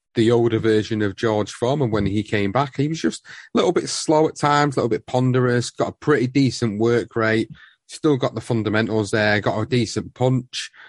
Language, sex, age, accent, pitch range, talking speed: English, male, 30-49, British, 105-130 Hz, 210 wpm